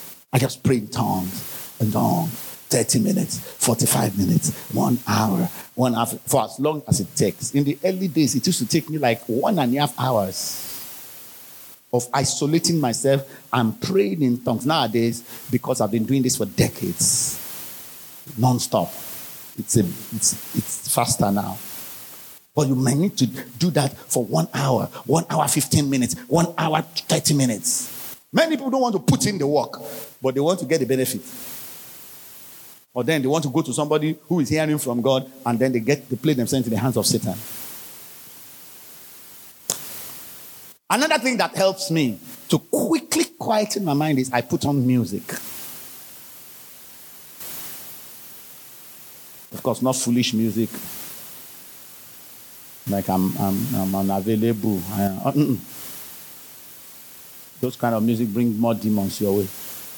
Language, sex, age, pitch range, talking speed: English, male, 50-69, 115-155 Hz, 150 wpm